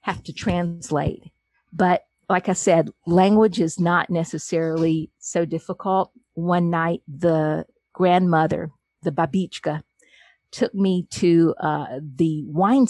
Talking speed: 115 wpm